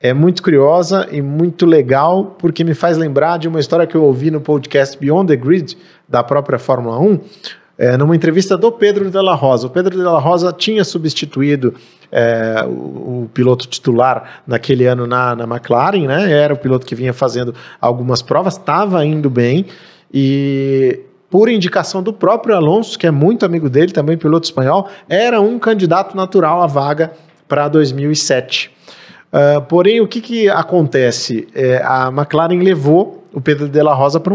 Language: Portuguese